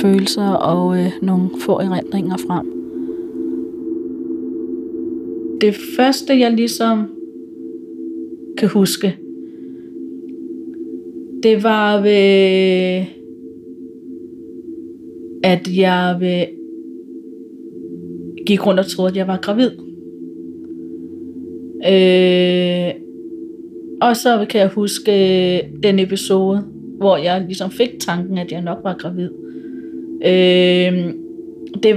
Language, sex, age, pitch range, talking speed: Danish, female, 30-49, 160-225 Hz, 85 wpm